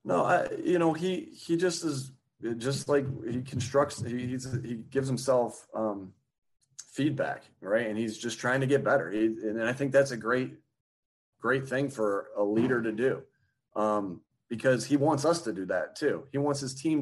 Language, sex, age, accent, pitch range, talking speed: English, male, 30-49, American, 110-135 Hz, 190 wpm